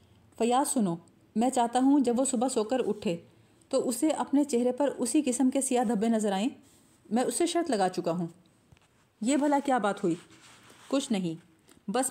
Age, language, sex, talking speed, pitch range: 30-49, Urdu, female, 185 wpm, 195-255 Hz